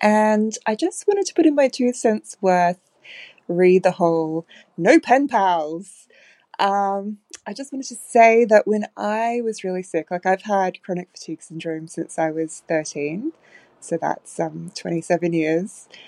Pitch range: 165-210 Hz